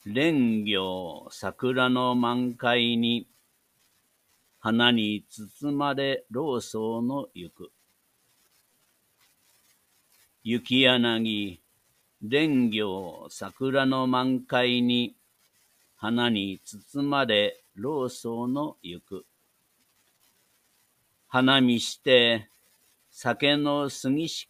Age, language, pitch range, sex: 60-79, Japanese, 115-135 Hz, male